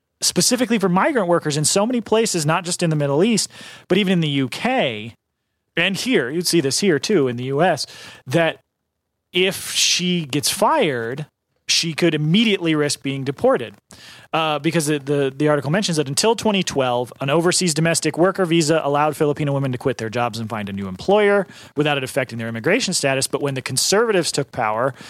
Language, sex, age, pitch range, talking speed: English, male, 30-49, 140-180 Hz, 190 wpm